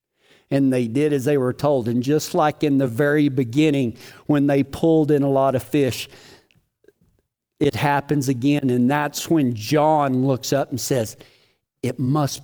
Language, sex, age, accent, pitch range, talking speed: English, male, 50-69, American, 145-220 Hz, 170 wpm